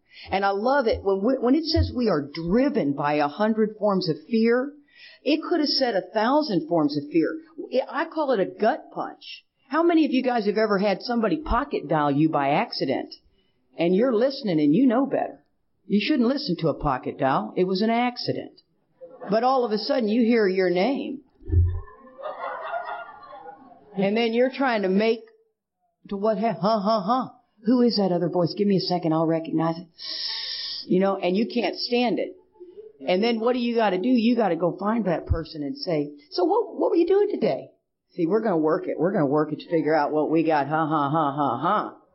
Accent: American